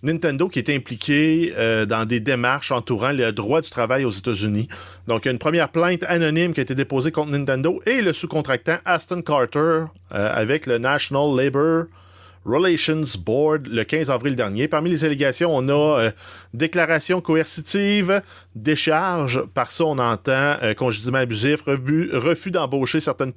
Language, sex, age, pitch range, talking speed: French, male, 30-49, 105-145 Hz, 165 wpm